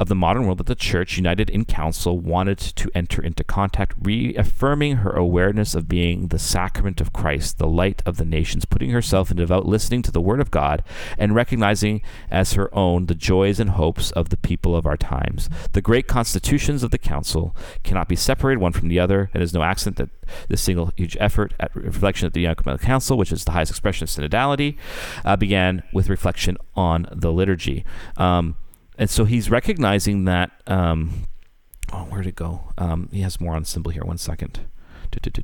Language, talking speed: English, 195 wpm